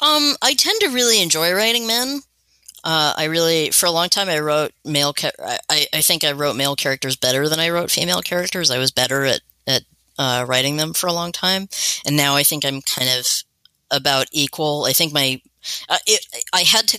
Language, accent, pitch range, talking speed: English, American, 130-175 Hz, 210 wpm